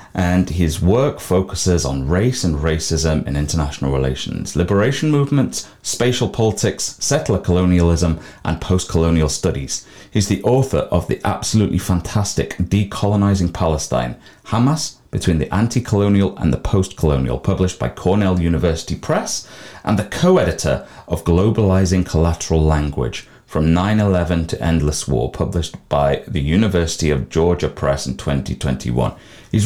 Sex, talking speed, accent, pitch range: male, 125 wpm, British, 80-115 Hz